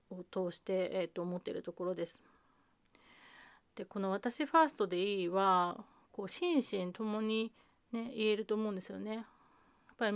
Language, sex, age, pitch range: Japanese, female, 30-49, 185-235 Hz